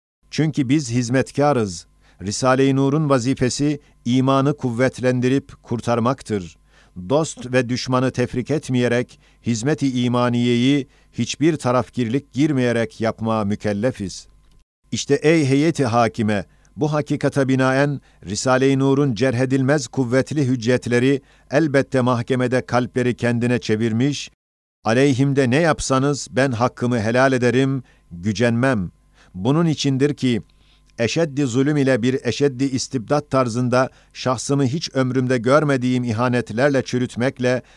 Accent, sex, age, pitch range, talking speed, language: native, male, 50-69, 120-140 Hz, 100 wpm, Turkish